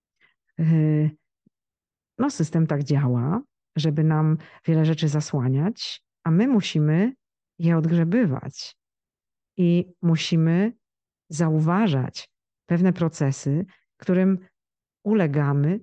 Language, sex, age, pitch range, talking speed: Polish, female, 50-69, 150-180 Hz, 80 wpm